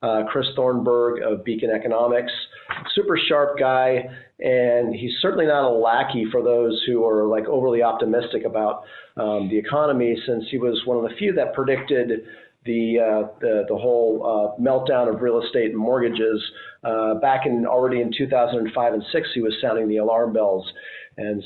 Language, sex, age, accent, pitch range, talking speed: English, male, 40-59, American, 120-145 Hz, 175 wpm